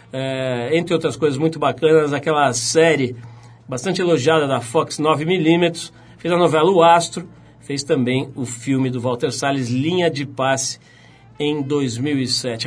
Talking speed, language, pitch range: 140 wpm, Portuguese, 135-180 Hz